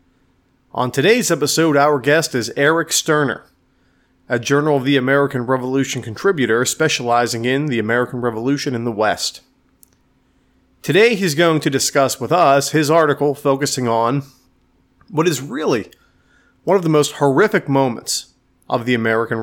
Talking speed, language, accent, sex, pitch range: 140 wpm, English, American, male, 120-145 Hz